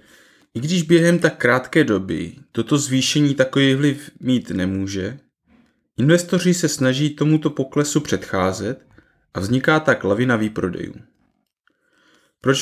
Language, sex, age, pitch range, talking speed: Czech, male, 30-49, 110-160 Hz, 115 wpm